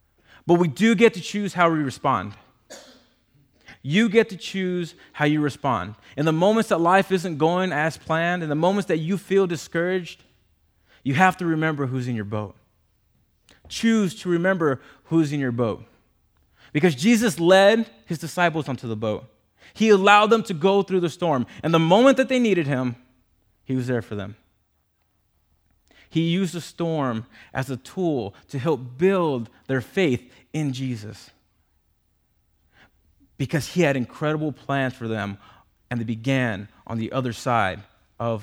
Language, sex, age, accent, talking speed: English, male, 20-39, American, 160 wpm